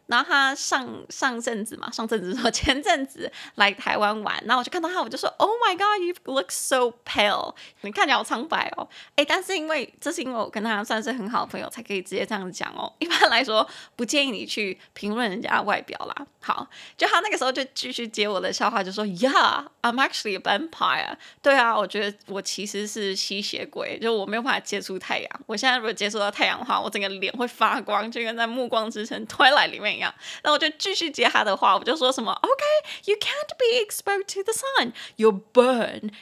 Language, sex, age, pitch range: Chinese, female, 20-39, 210-305 Hz